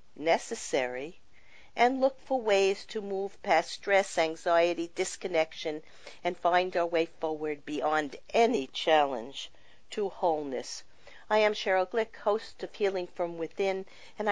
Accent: American